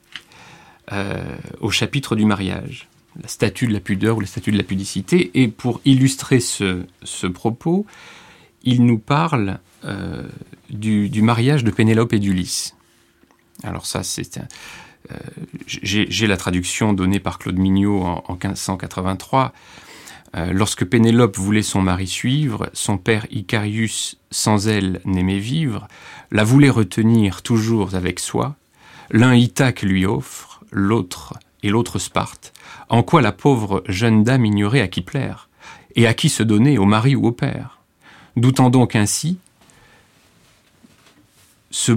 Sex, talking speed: male, 145 wpm